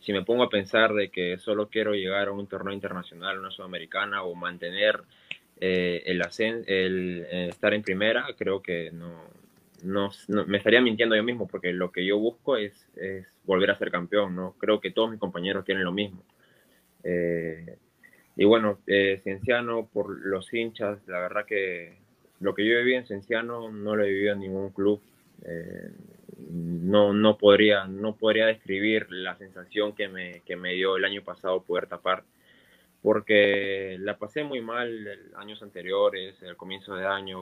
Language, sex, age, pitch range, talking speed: Spanish, male, 20-39, 95-105 Hz, 180 wpm